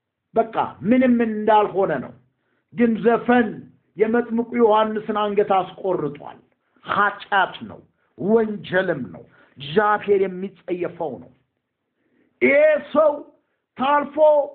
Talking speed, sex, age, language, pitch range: 80 wpm, male, 50-69, Amharic, 195-290 Hz